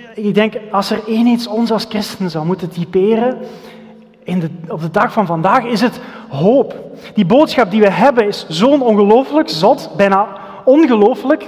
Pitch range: 195-240 Hz